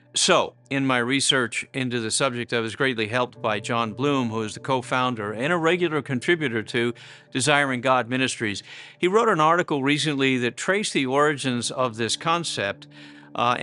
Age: 50-69